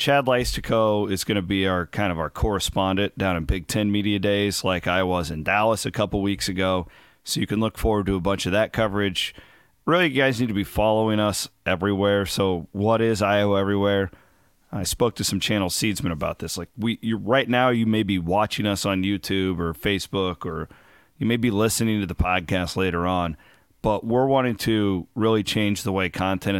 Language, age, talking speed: English, 40-59, 210 wpm